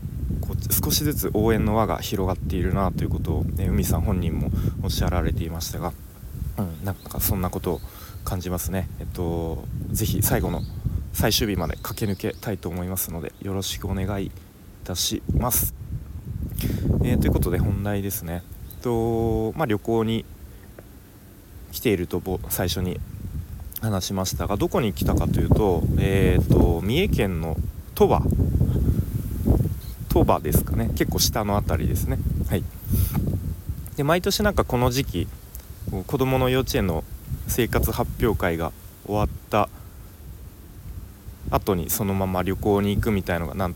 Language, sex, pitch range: Japanese, male, 90-105 Hz